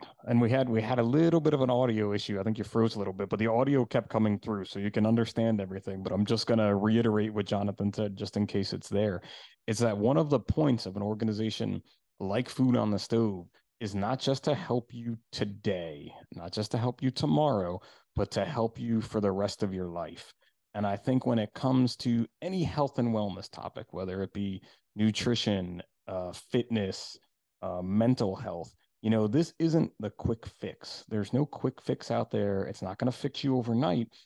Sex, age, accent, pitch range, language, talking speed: male, 30-49, American, 100-120 Hz, English, 210 wpm